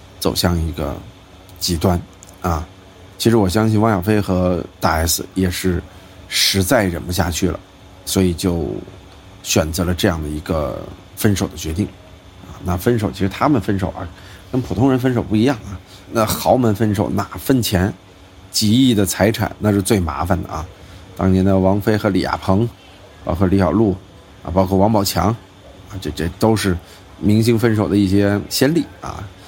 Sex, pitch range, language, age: male, 95-105 Hz, Chinese, 50-69